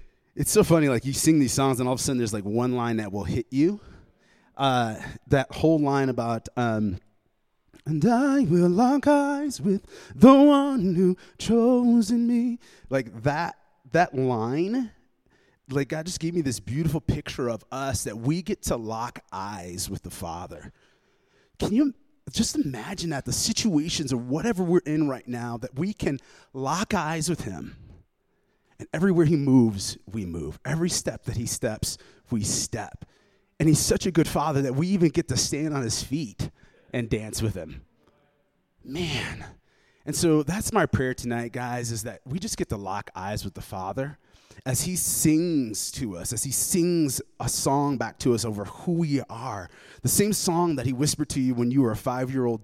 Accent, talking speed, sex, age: American, 185 wpm, male, 30-49